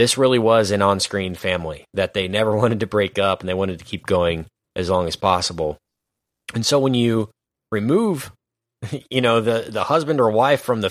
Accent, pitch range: American, 95-115 Hz